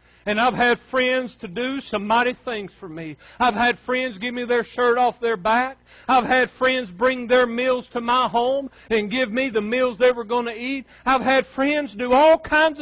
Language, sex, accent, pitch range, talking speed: English, male, American, 220-255 Hz, 215 wpm